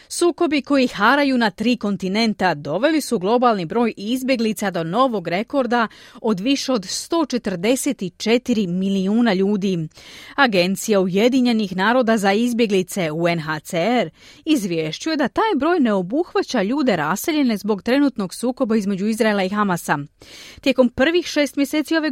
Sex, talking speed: female, 125 wpm